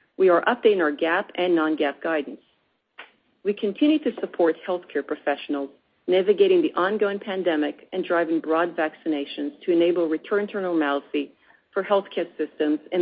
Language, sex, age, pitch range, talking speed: English, female, 40-59, 160-205 Hz, 145 wpm